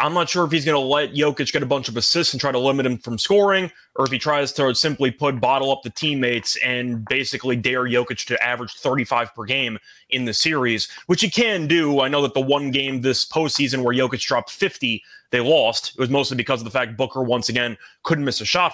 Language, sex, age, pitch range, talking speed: English, male, 20-39, 130-170 Hz, 245 wpm